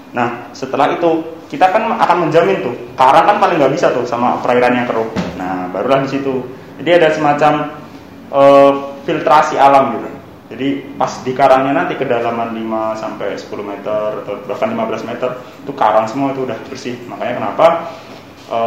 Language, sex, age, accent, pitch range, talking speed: Indonesian, male, 20-39, native, 110-140 Hz, 165 wpm